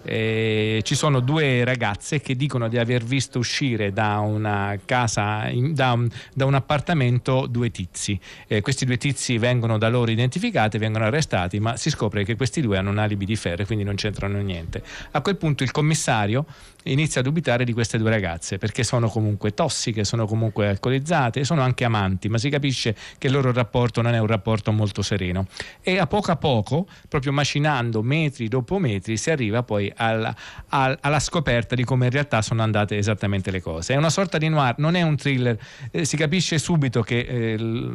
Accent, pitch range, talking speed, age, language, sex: native, 110-140 Hz, 195 wpm, 40-59, Italian, male